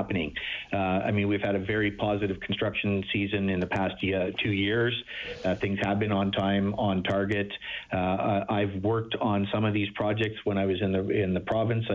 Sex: male